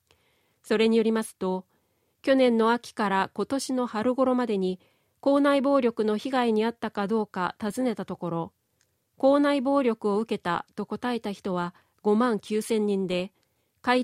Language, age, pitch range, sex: Japanese, 40-59, 190-245 Hz, female